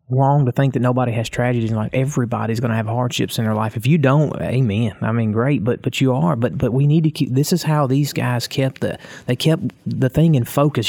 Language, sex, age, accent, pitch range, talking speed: English, male, 30-49, American, 120-150 Hz, 255 wpm